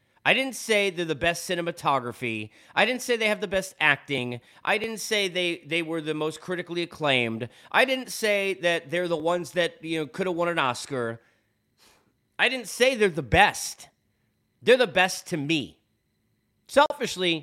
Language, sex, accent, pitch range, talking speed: English, male, American, 140-210 Hz, 180 wpm